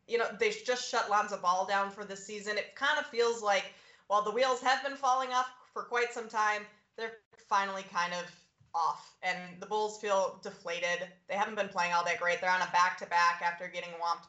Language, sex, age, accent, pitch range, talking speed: English, female, 20-39, American, 185-225 Hz, 215 wpm